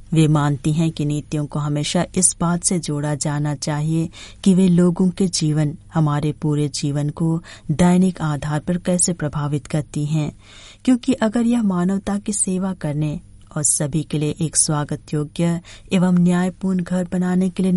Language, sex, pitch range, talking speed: Hindi, female, 150-180 Hz, 165 wpm